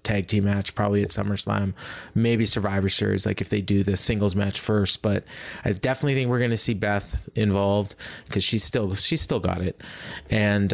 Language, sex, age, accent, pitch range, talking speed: English, male, 30-49, American, 100-125 Hz, 195 wpm